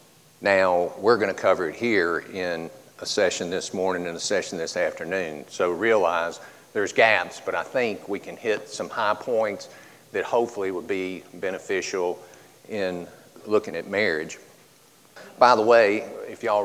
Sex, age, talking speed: male, 50-69, 155 wpm